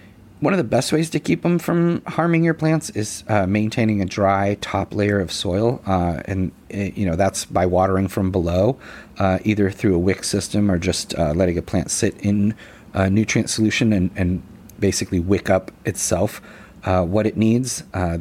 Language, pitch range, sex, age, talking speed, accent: English, 95-110 Hz, male, 30-49, 190 wpm, American